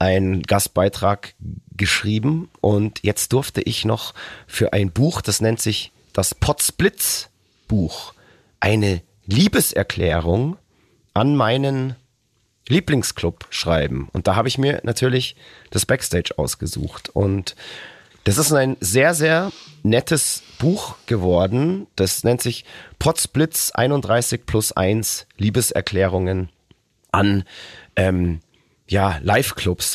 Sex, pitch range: male, 95-125 Hz